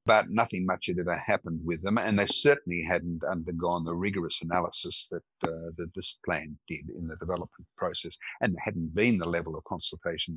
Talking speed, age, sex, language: 190 wpm, 60-79, male, English